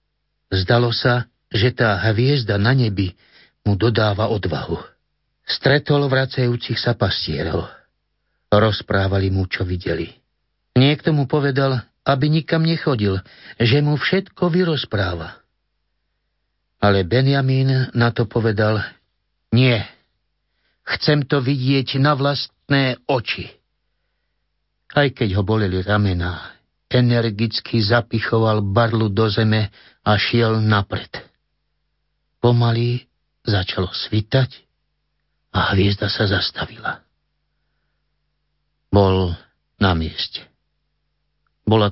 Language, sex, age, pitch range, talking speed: Slovak, male, 60-79, 100-125 Hz, 90 wpm